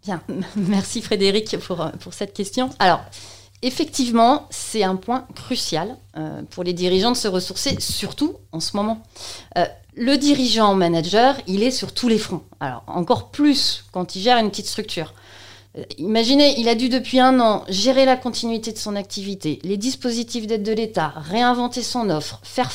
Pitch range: 180-245 Hz